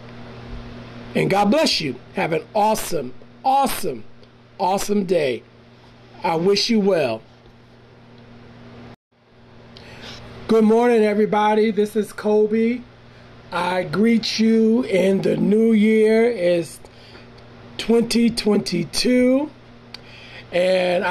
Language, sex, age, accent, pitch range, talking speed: English, male, 40-59, American, 155-215 Hz, 80 wpm